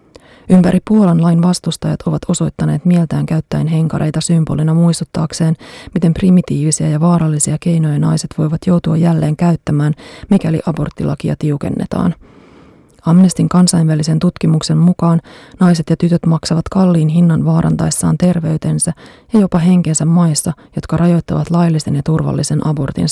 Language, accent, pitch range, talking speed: Finnish, native, 160-180 Hz, 120 wpm